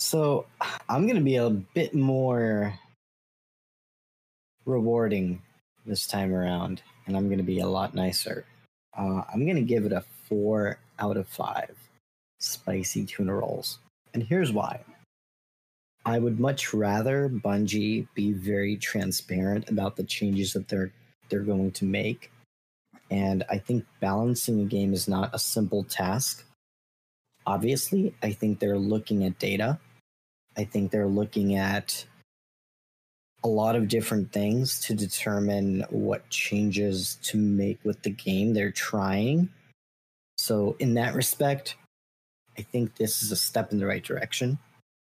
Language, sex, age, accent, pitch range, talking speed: English, male, 30-49, American, 100-115 Hz, 140 wpm